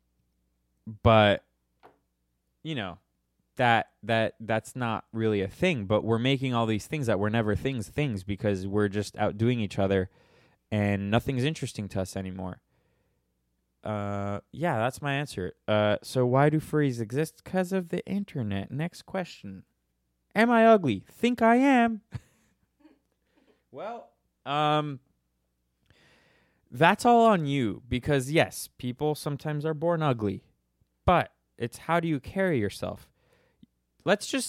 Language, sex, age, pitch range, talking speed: English, male, 20-39, 105-155 Hz, 135 wpm